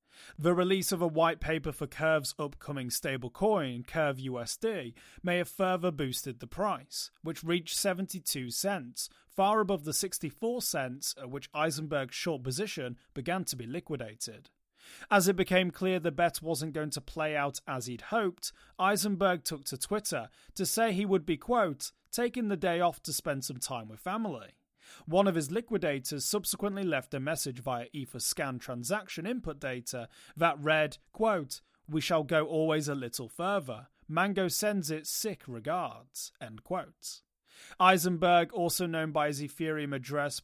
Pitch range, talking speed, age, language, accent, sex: 140-180 Hz, 160 wpm, 30-49, English, British, male